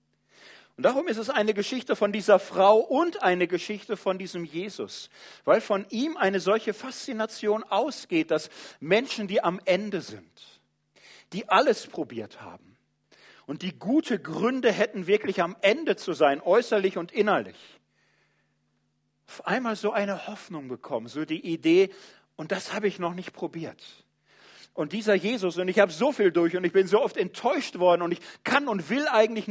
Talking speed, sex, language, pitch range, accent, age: 170 wpm, male, German, 150-210 Hz, German, 40-59